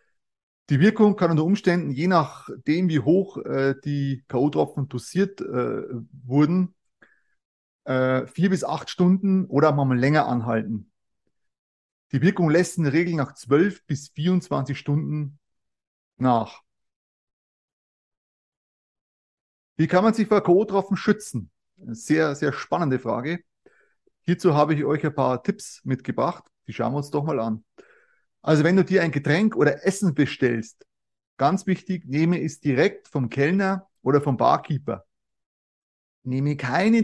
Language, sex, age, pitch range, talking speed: German, male, 30-49, 135-185 Hz, 135 wpm